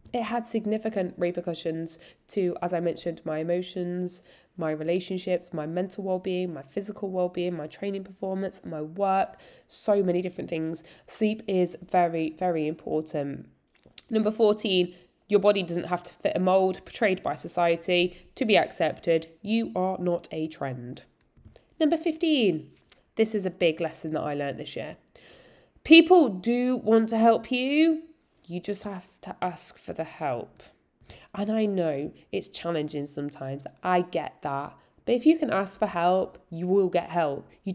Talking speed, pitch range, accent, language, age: 160 wpm, 175-230 Hz, British, English, 20-39